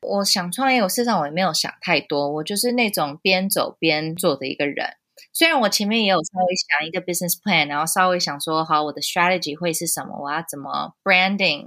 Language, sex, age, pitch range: Chinese, female, 20-39, 170-210 Hz